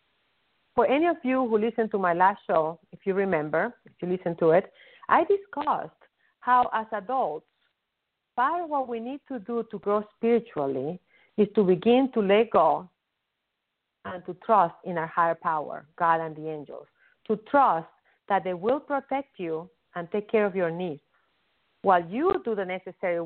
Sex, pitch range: female, 170-255 Hz